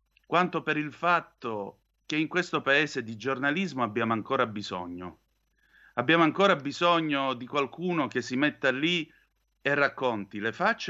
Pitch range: 105-140 Hz